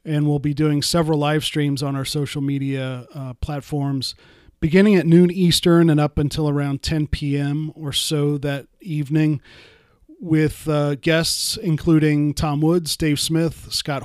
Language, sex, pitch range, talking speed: English, male, 145-165 Hz, 155 wpm